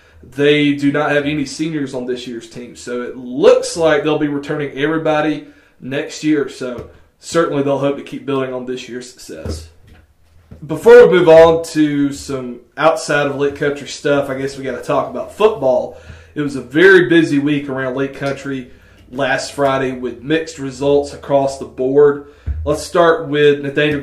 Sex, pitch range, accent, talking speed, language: male, 130-150 Hz, American, 175 wpm, English